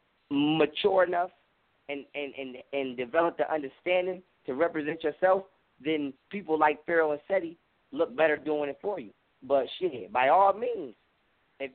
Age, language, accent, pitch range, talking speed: 20-39, English, American, 140-175 Hz, 155 wpm